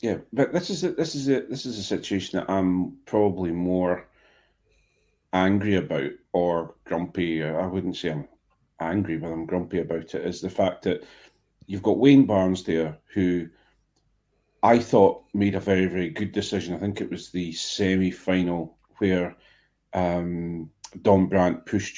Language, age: English, 40-59